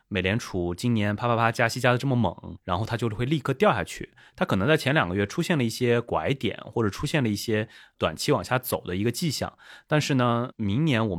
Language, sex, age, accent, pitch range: Chinese, male, 30-49, native, 95-135 Hz